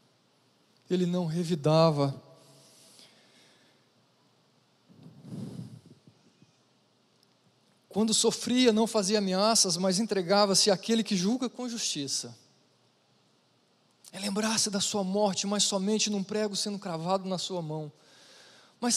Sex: male